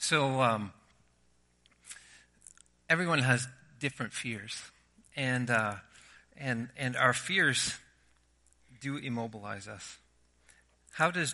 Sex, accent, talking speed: male, American, 80 wpm